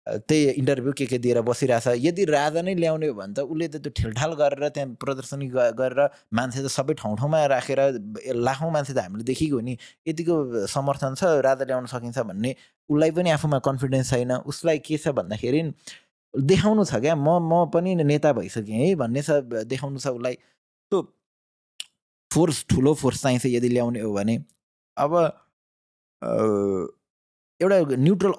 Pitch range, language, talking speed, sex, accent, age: 120-155 Hz, English, 100 wpm, male, Indian, 20-39